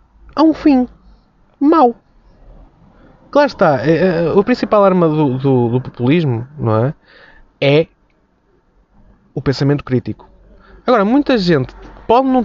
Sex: male